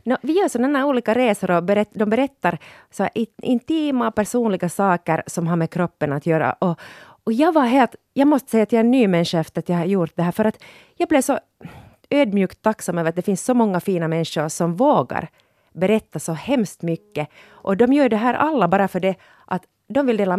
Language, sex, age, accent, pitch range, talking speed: Swedish, female, 30-49, Finnish, 170-255 Hz, 220 wpm